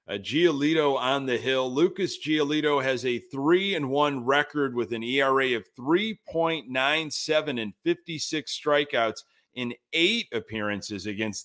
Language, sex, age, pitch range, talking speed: English, male, 30-49, 120-155 Hz, 130 wpm